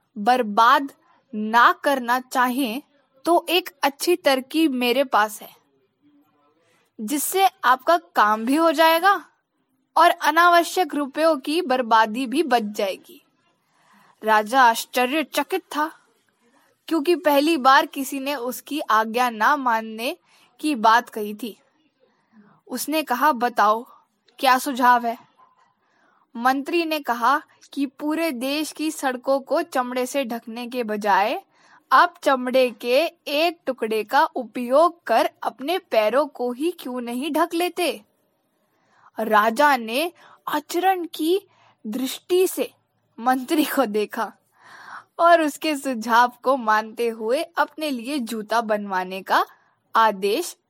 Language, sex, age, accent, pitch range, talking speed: English, female, 10-29, Indian, 235-315 Hz, 115 wpm